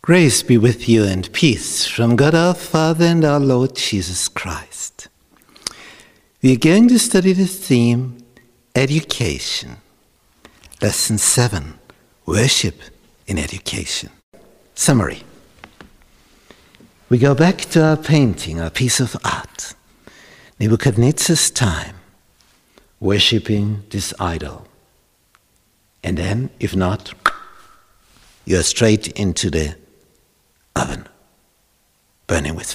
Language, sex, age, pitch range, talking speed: English, male, 60-79, 95-125 Hz, 100 wpm